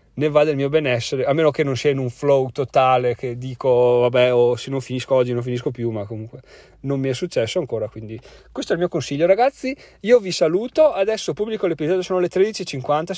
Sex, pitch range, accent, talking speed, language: male, 135-180 Hz, native, 225 wpm, Italian